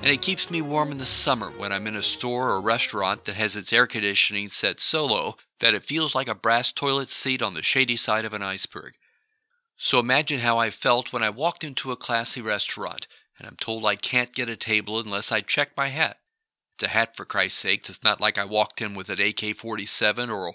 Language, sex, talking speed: English, male, 235 wpm